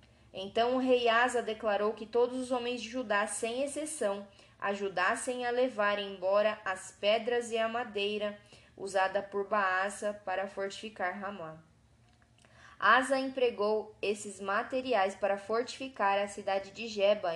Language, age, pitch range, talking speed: Portuguese, 10-29, 190-235 Hz, 130 wpm